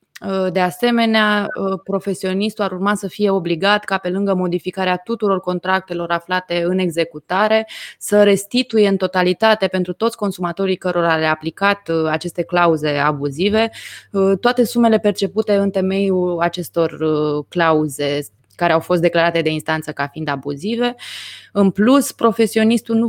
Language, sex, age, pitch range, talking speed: Romanian, female, 20-39, 165-200 Hz, 130 wpm